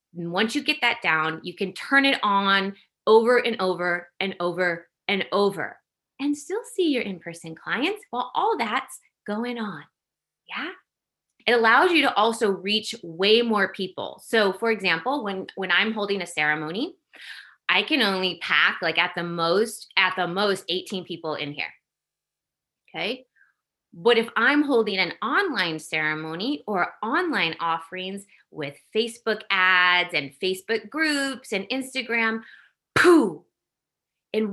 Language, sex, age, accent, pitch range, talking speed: English, female, 20-39, American, 185-250 Hz, 150 wpm